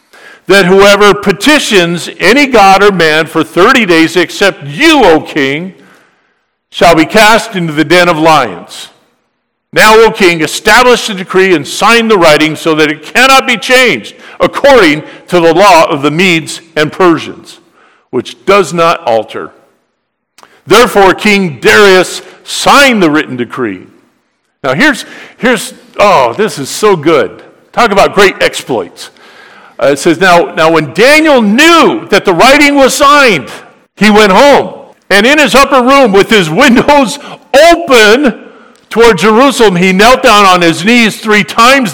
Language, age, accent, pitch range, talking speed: English, 50-69, American, 170-240 Hz, 150 wpm